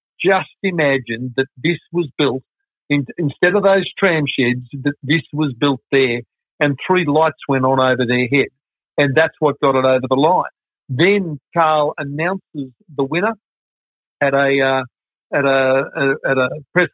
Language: English